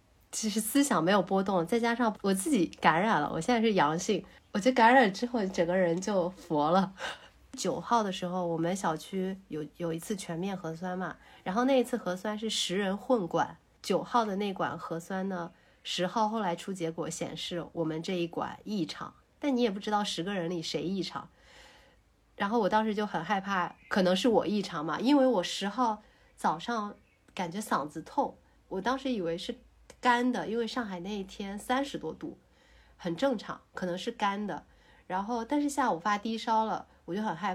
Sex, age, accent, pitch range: female, 30-49, native, 170-225 Hz